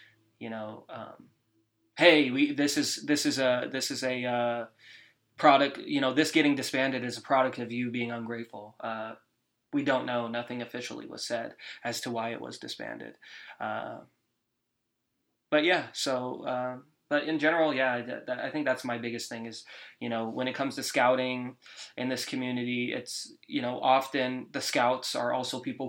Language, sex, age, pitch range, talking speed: English, male, 20-39, 115-130 Hz, 180 wpm